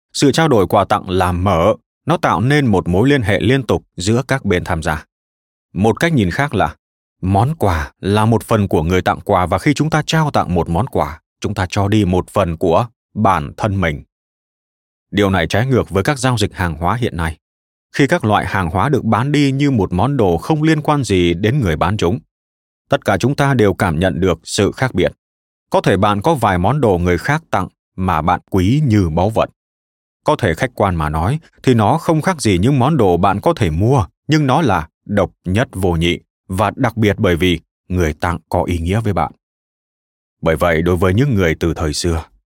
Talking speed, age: 225 wpm, 20-39